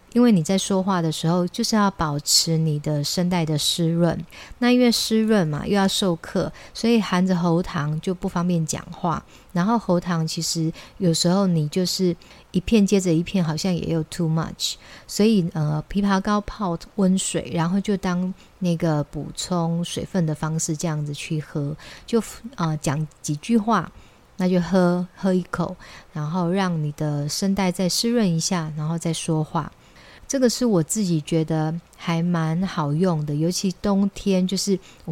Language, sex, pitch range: Chinese, female, 160-190 Hz